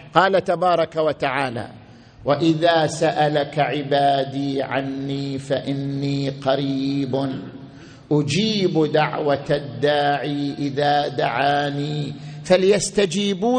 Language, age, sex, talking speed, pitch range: Arabic, 50-69, male, 65 wpm, 155-230 Hz